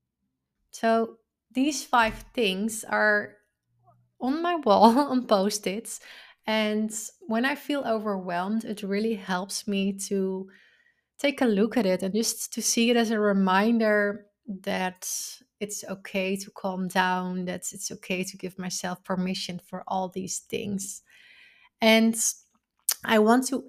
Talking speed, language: 135 wpm, English